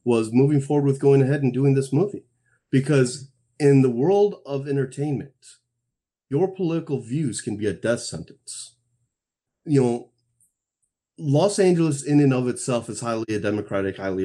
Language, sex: English, male